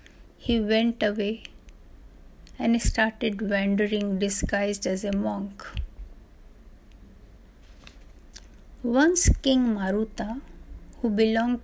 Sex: female